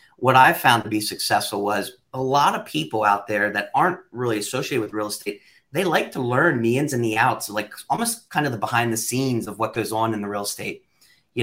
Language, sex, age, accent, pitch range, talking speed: English, male, 30-49, American, 110-130 Hz, 240 wpm